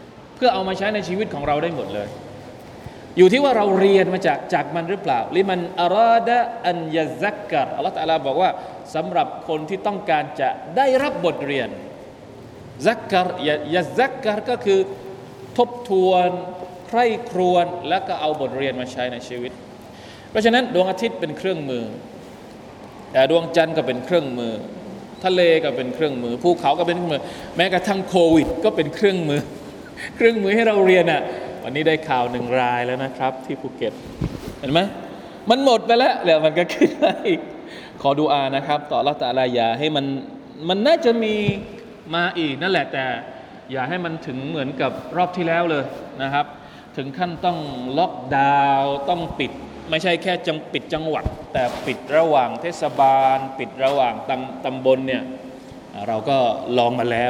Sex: male